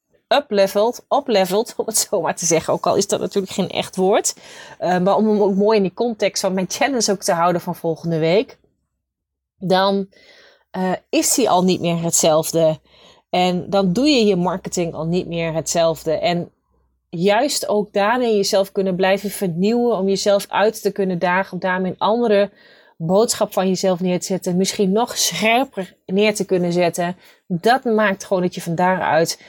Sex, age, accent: female, 30-49, Dutch